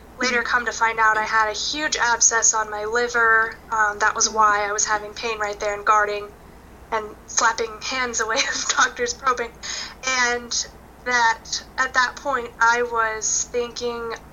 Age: 10-29